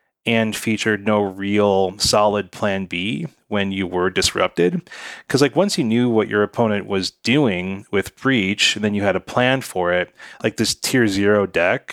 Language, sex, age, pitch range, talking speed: English, male, 30-49, 95-120 Hz, 180 wpm